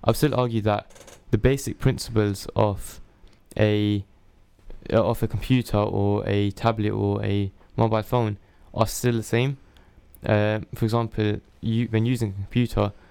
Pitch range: 100-115 Hz